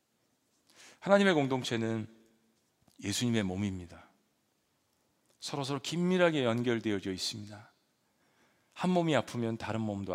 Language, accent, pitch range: Korean, native, 125-190 Hz